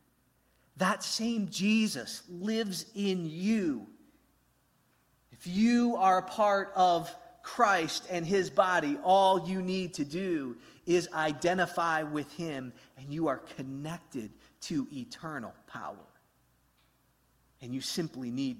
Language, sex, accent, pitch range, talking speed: English, male, American, 140-190 Hz, 115 wpm